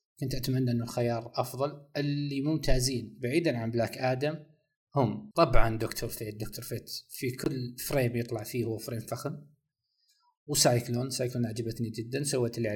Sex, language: male, Arabic